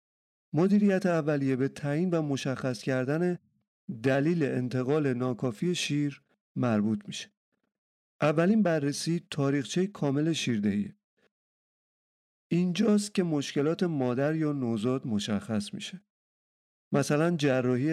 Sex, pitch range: male, 125-165 Hz